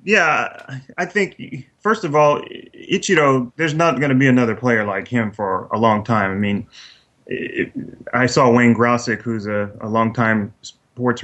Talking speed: 170 wpm